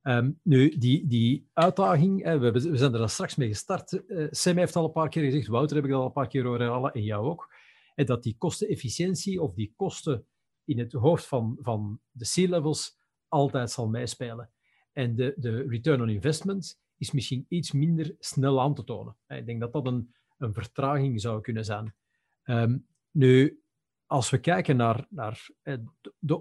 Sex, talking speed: male, 180 wpm